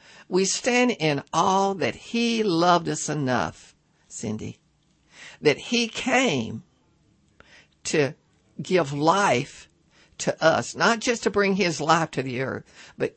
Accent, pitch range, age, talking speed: American, 140-195 Hz, 60-79, 130 wpm